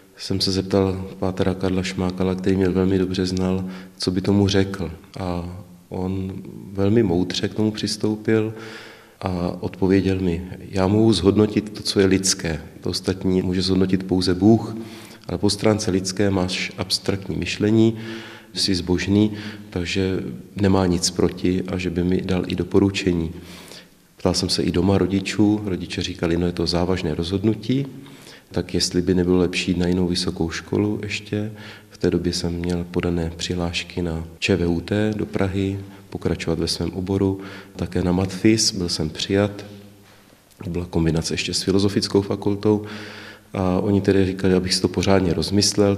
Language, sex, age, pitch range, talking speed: Czech, male, 30-49, 90-100 Hz, 155 wpm